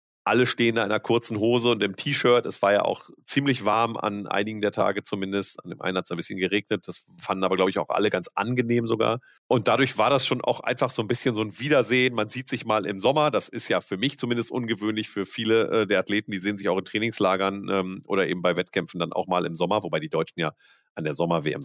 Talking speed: 250 wpm